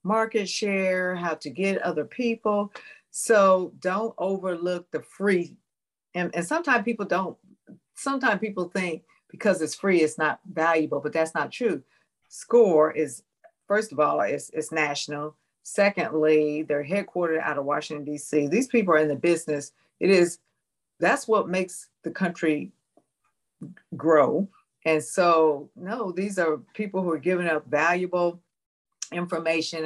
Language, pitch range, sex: English, 155-190 Hz, female